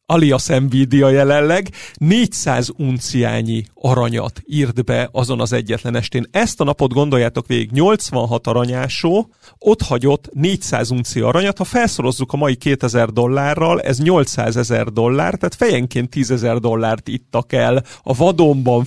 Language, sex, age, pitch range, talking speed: Hungarian, male, 40-59, 125-160 Hz, 135 wpm